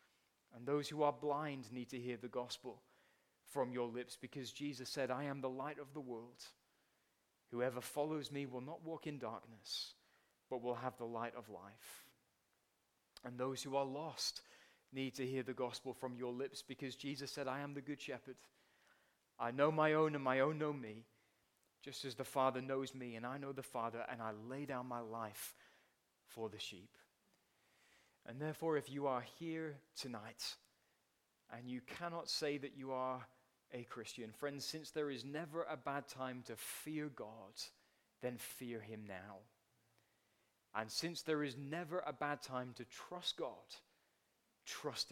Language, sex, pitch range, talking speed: English, male, 120-145 Hz, 175 wpm